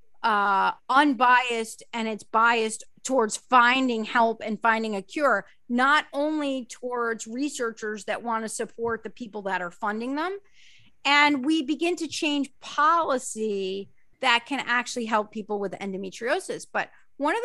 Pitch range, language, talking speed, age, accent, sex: 200-250 Hz, English, 145 wpm, 40-59, American, female